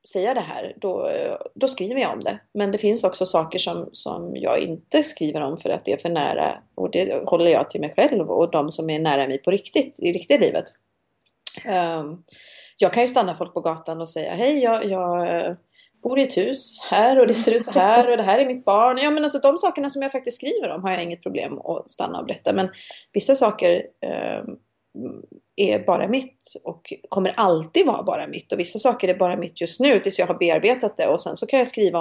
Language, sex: Swedish, female